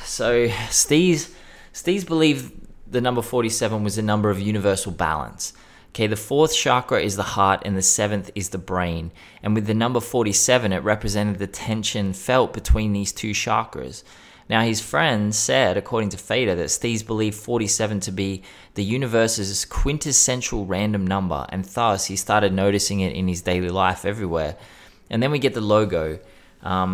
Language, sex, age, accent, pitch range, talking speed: English, male, 20-39, Australian, 95-115 Hz, 165 wpm